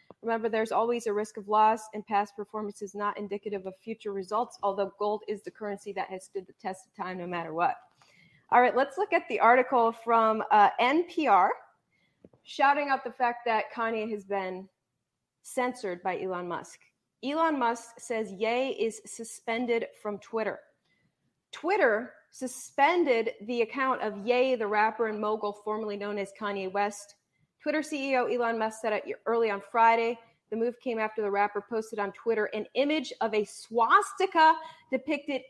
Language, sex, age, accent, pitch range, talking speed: English, female, 30-49, American, 200-245 Hz, 170 wpm